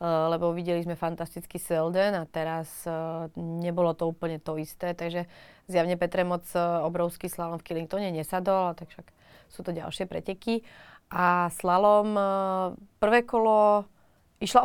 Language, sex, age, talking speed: Slovak, female, 30-49, 135 wpm